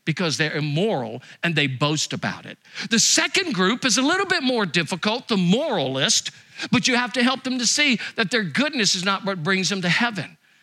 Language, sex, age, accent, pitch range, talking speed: English, male, 50-69, American, 160-235 Hz, 210 wpm